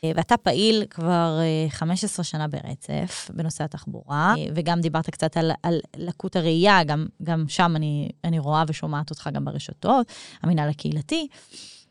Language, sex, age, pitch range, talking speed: Hebrew, female, 20-39, 165-220 Hz, 135 wpm